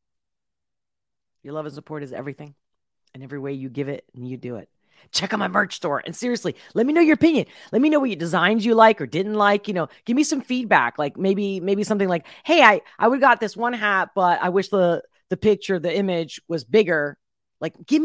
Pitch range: 155-225 Hz